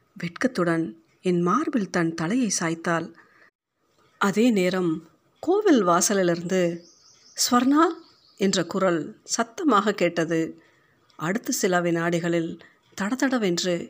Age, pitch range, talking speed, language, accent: 50-69, 165-210 Hz, 85 wpm, Tamil, native